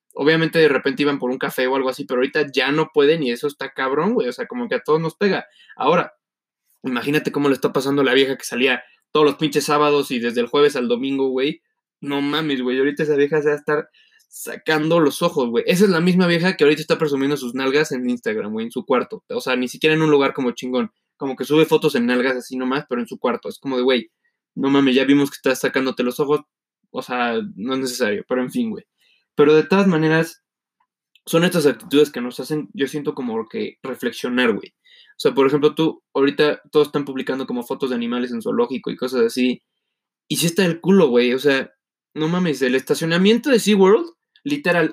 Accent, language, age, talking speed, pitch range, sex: Mexican, Spanish, 20-39, 230 wpm, 135-180 Hz, male